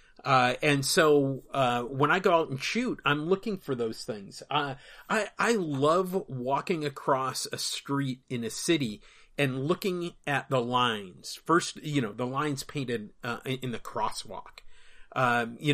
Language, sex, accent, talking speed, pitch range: English, male, American, 165 wpm, 115-155 Hz